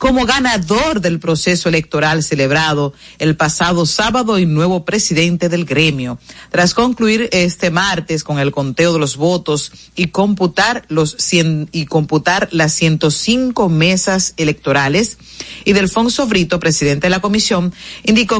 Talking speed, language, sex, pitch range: 135 wpm, Spanish, female, 155-210 Hz